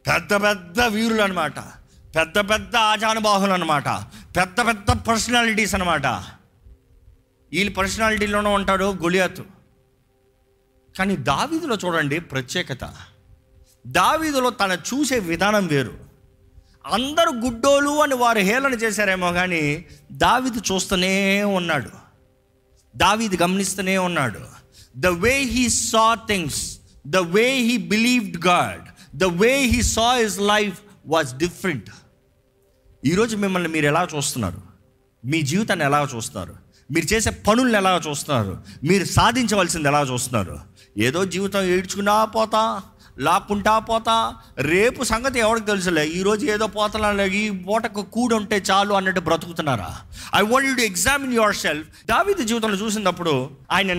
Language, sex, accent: Telugu, male, native